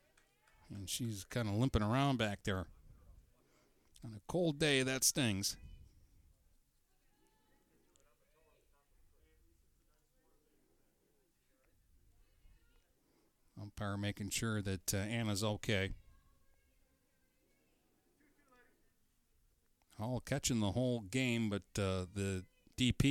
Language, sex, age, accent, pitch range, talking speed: English, male, 50-69, American, 100-130 Hz, 80 wpm